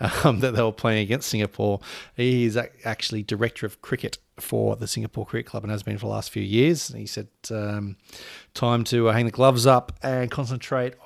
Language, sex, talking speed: English, male, 200 wpm